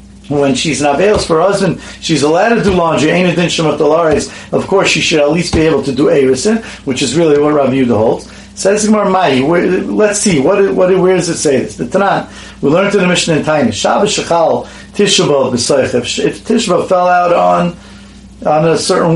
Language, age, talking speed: English, 50-69, 205 wpm